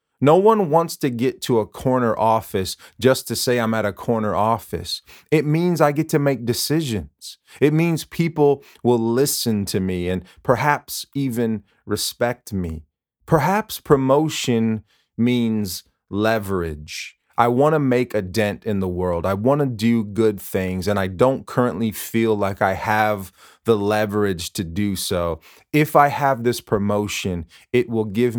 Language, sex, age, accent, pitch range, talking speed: English, male, 30-49, American, 100-130 Hz, 160 wpm